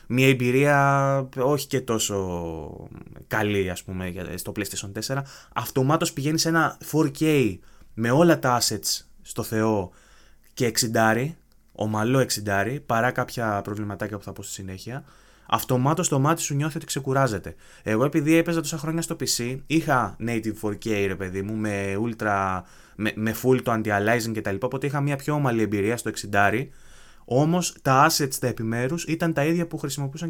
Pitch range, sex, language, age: 105-140 Hz, male, Greek, 20-39